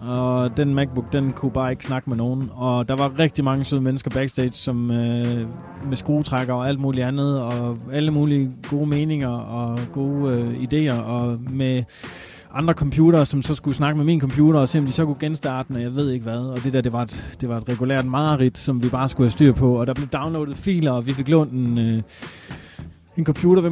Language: Danish